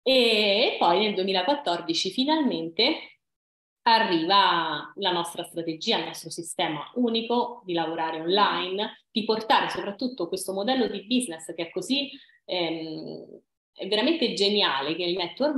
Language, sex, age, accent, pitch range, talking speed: Italian, female, 20-39, native, 165-230 Hz, 130 wpm